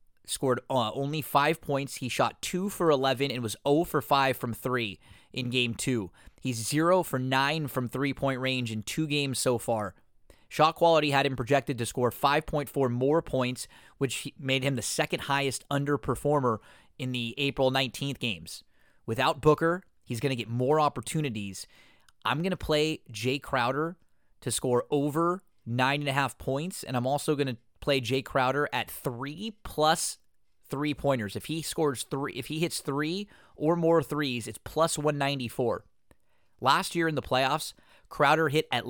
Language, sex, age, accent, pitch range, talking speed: English, male, 20-39, American, 125-155 Hz, 165 wpm